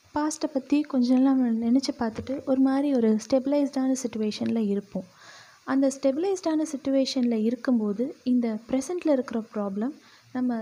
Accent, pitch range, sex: native, 215-265 Hz, female